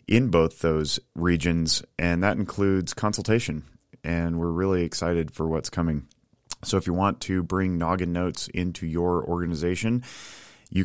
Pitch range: 80-95 Hz